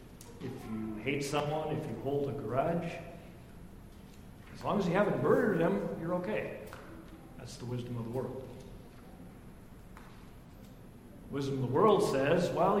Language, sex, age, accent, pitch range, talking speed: English, male, 50-69, American, 130-160 Hz, 140 wpm